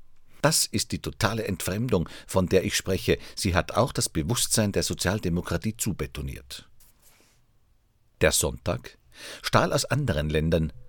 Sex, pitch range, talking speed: male, 85-120 Hz, 125 wpm